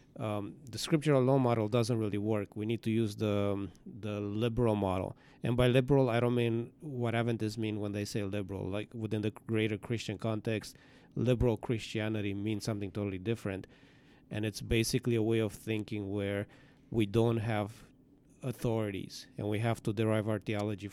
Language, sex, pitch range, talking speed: English, male, 110-135 Hz, 170 wpm